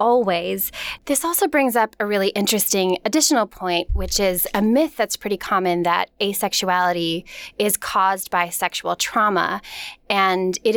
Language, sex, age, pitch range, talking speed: English, female, 20-39, 185-235 Hz, 145 wpm